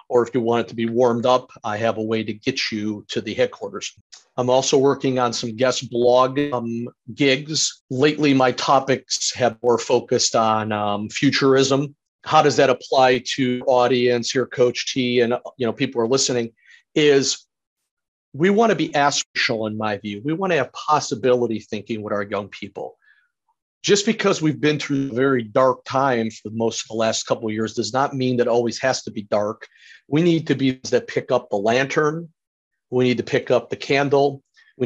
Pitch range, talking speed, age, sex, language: 115-140 Hz, 200 wpm, 40-59, male, English